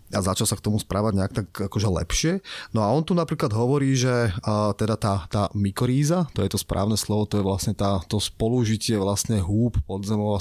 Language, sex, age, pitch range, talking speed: Slovak, male, 20-39, 100-120 Hz, 215 wpm